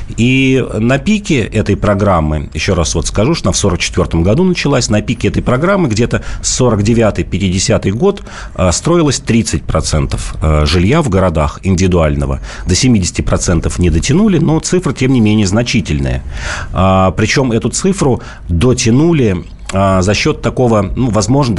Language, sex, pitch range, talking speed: Russian, male, 85-120 Hz, 135 wpm